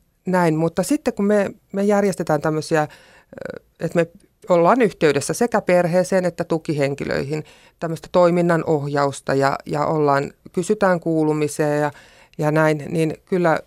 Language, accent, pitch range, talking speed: Finnish, native, 150-185 Hz, 125 wpm